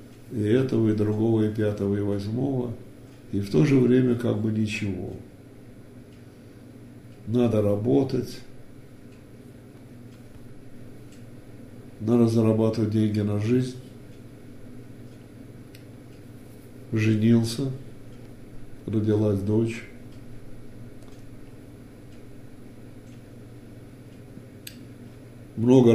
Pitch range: 105-125 Hz